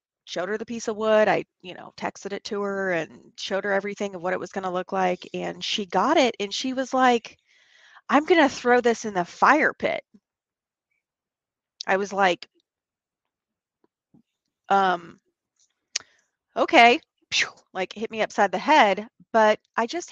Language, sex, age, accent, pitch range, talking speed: English, female, 30-49, American, 180-225 Hz, 165 wpm